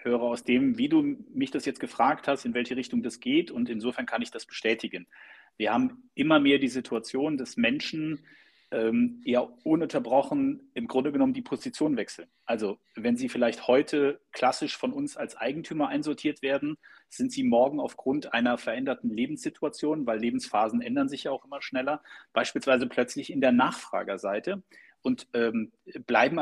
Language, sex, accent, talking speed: German, male, German, 165 wpm